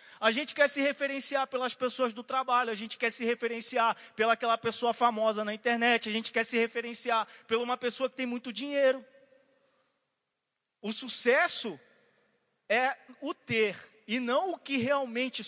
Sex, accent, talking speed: male, Brazilian, 165 wpm